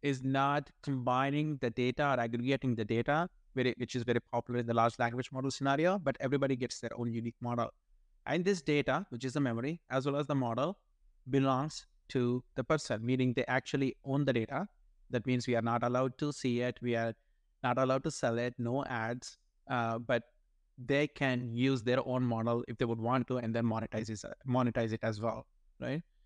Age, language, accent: 20-39, English, Indian